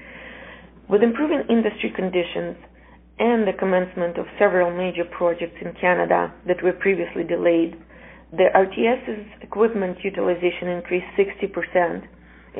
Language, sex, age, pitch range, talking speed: English, female, 30-49, 165-190 Hz, 110 wpm